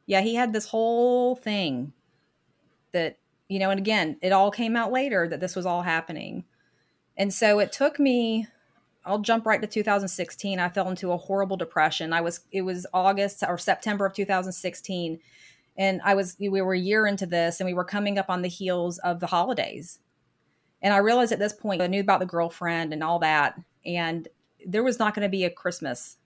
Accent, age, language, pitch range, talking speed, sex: American, 30-49, English, 165-195 Hz, 205 wpm, female